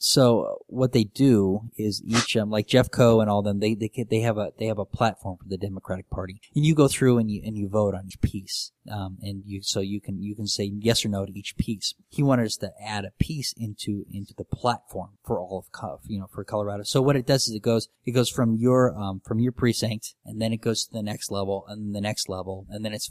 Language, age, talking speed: English, 20-39, 260 wpm